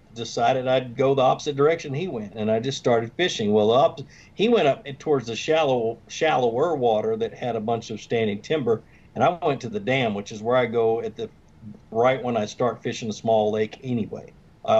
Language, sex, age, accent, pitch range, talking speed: English, male, 50-69, American, 105-130 Hz, 215 wpm